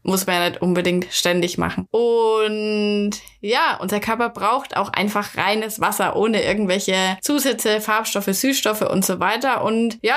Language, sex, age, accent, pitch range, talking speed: German, female, 20-39, German, 190-230 Hz, 155 wpm